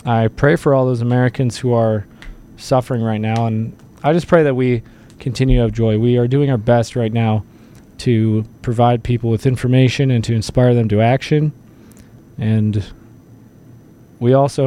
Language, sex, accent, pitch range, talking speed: English, male, American, 110-120 Hz, 170 wpm